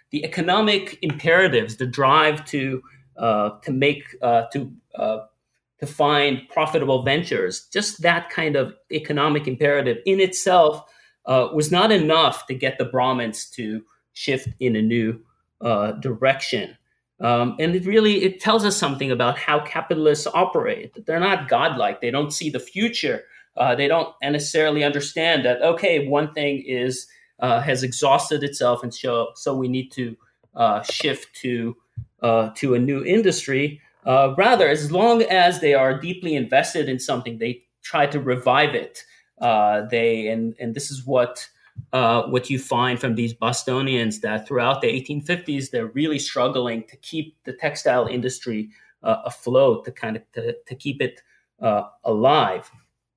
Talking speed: 160 wpm